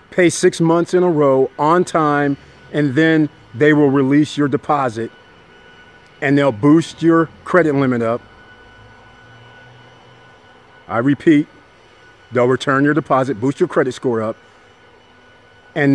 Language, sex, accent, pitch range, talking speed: English, male, American, 125-170 Hz, 130 wpm